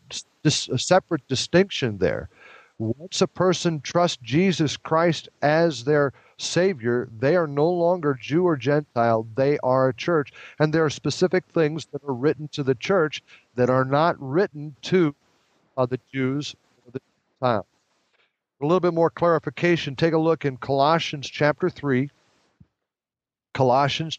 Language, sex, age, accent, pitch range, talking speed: English, male, 50-69, American, 130-160 Hz, 150 wpm